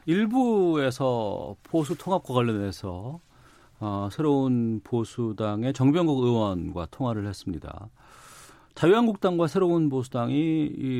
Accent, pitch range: native, 100-145 Hz